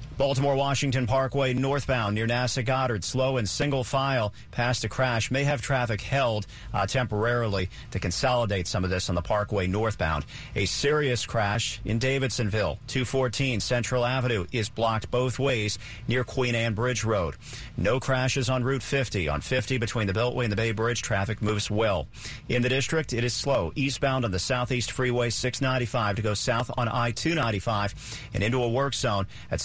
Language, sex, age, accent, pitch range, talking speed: English, male, 50-69, American, 110-130 Hz, 170 wpm